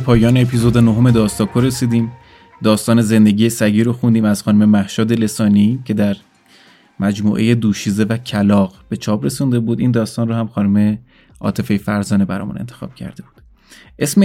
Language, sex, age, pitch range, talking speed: Persian, male, 20-39, 105-125 Hz, 150 wpm